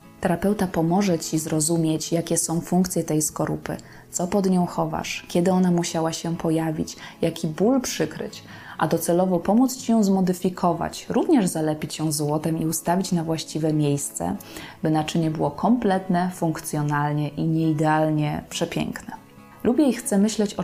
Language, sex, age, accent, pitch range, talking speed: Polish, female, 20-39, native, 160-185 Hz, 145 wpm